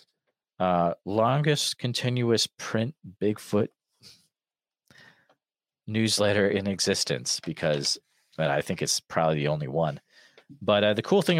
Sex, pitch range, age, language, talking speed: male, 95-120 Hz, 40-59, English, 115 wpm